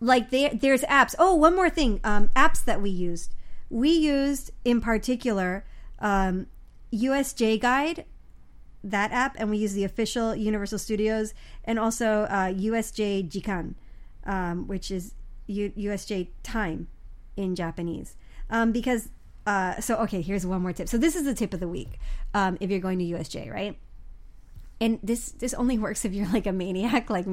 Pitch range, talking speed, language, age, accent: 185-225 Hz, 165 wpm, English, 30-49, American